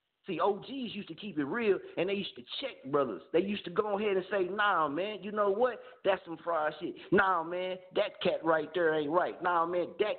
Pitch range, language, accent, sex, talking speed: 165-215 Hz, English, American, male, 230 wpm